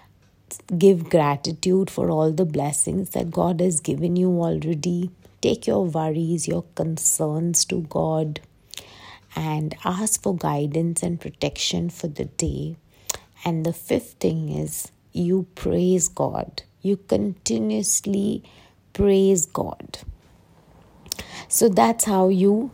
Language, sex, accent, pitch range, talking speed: English, female, Indian, 155-185 Hz, 115 wpm